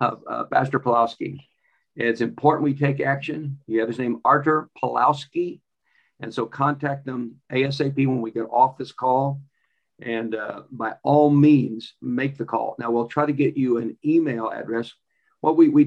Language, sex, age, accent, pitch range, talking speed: English, male, 50-69, American, 120-145 Hz, 170 wpm